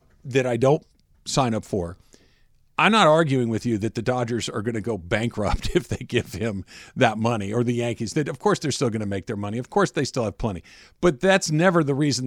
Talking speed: 240 wpm